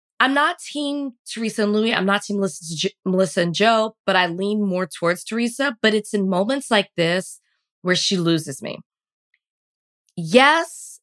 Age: 20-39